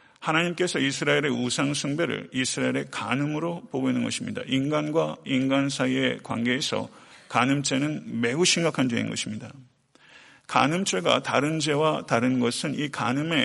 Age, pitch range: 40-59, 130-175 Hz